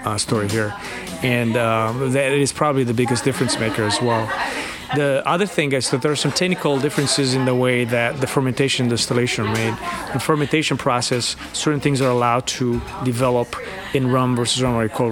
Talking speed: 190 wpm